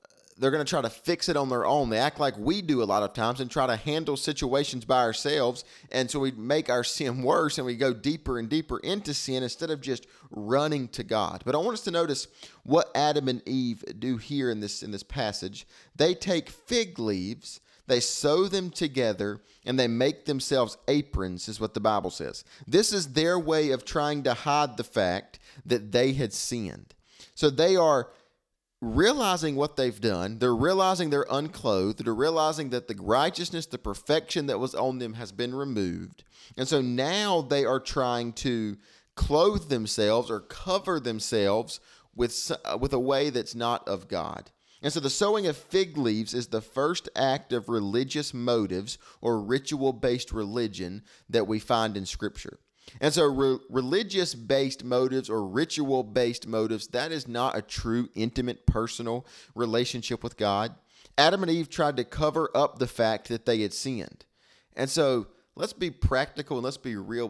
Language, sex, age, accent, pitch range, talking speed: English, male, 30-49, American, 115-150 Hz, 180 wpm